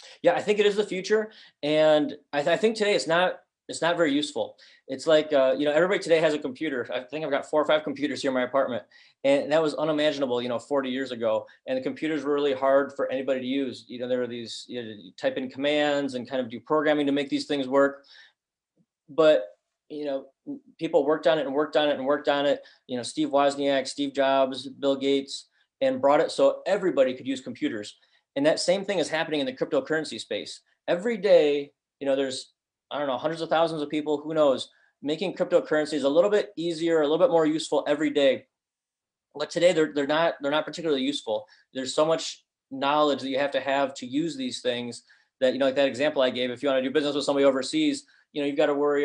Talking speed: 240 wpm